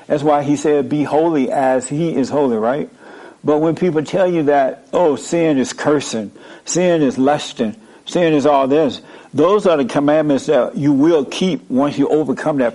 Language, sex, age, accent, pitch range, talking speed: English, male, 60-79, American, 135-165 Hz, 190 wpm